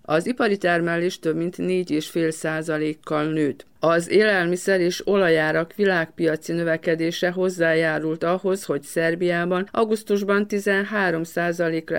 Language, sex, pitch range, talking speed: Hungarian, female, 160-180 Hz, 95 wpm